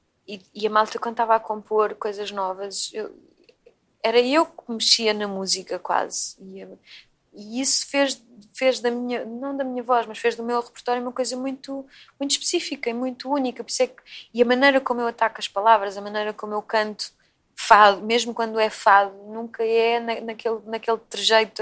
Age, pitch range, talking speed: 20-39, 210-255 Hz, 185 wpm